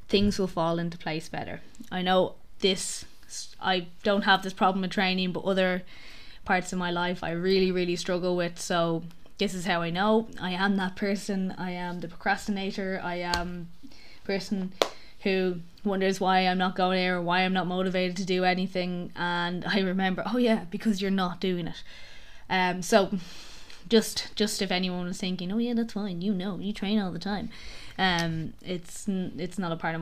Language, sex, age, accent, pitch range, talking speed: English, female, 20-39, Irish, 180-205 Hz, 190 wpm